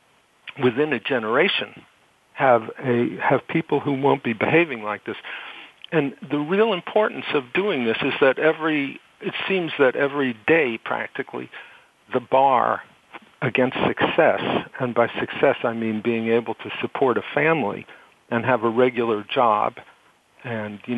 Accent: American